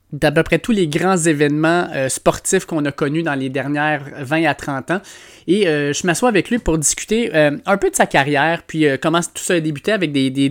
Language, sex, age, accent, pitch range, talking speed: French, male, 20-39, Canadian, 145-170 Hz, 245 wpm